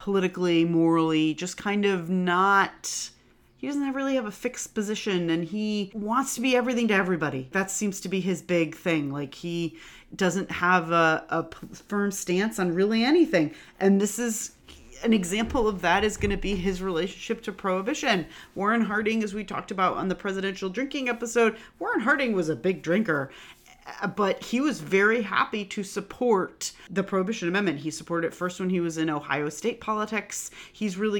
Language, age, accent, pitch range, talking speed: English, 30-49, American, 170-215 Hz, 180 wpm